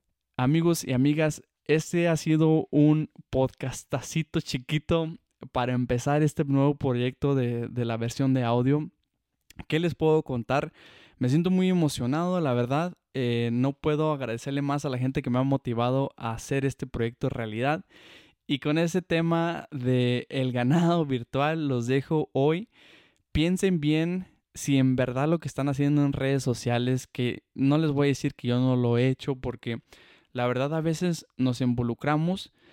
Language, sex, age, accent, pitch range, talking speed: Spanish, male, 20-39, Mexican, 130-155 Hz, 165 wpm